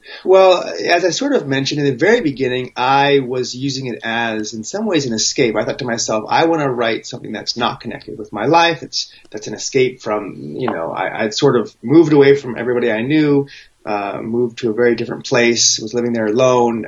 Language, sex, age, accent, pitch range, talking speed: English, male, 30-49, American, 110-140 Hz, 225 wpm